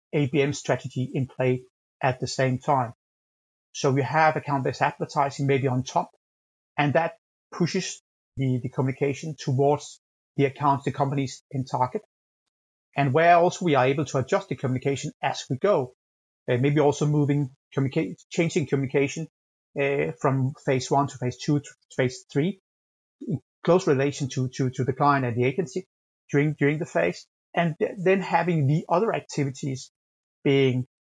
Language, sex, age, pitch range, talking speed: English, male, 30-49, 135-155 Hz, 150 wpm